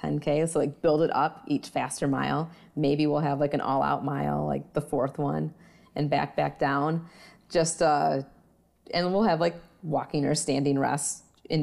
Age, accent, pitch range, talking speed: 30-49, American, 135-160 Hz, 180 wpm